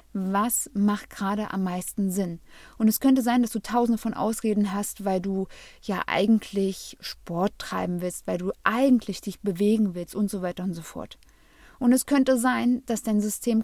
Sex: female